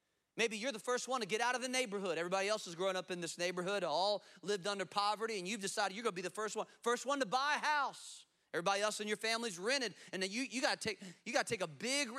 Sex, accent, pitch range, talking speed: male, American, 180-250 Hz, 285 wpm